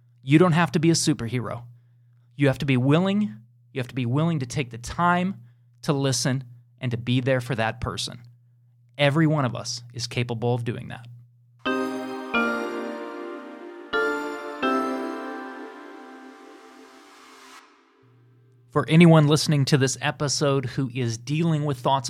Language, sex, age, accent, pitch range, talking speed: English, male, 30-49, American, 120-155 Hz, 135 wpm